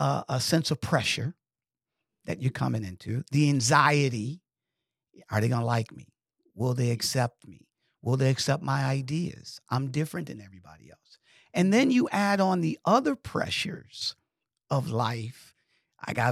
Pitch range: 130-210 Hz